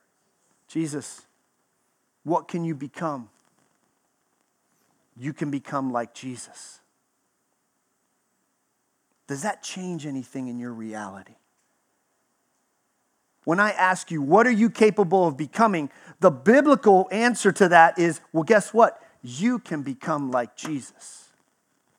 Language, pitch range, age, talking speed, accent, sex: English, 175-260 Hz, 40-59, 110 wpm, American, male